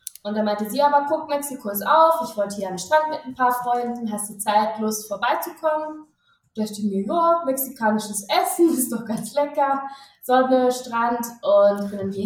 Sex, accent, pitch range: female, German, 195-245 Hz